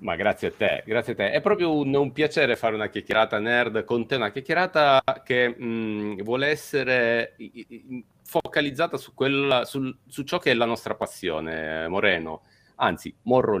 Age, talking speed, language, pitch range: 40-59, 180 wpm, Italian, 105-145 Hz